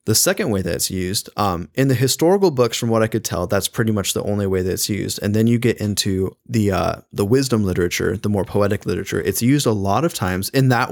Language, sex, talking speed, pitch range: English, male, 260 wpm, 95-120 Hz